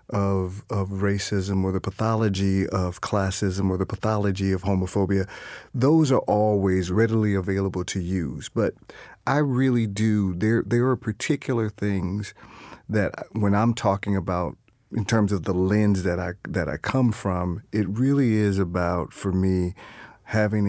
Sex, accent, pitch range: male, American, 90-105 Hz